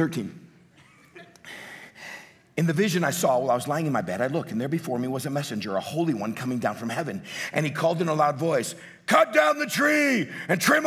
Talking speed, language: 230 wpm, English